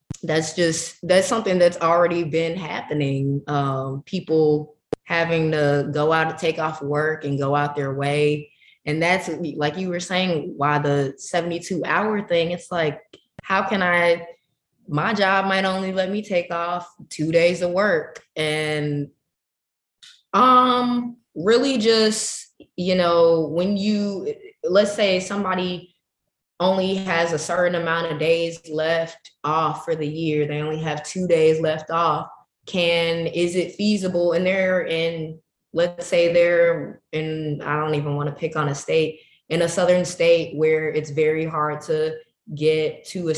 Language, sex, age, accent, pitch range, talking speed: English, female, 20-39, American, 150-180 Hz, 155 wpm